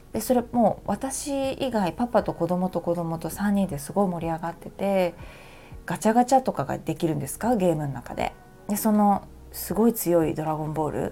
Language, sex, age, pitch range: Japanese, female, 20-39, 165-245 Hz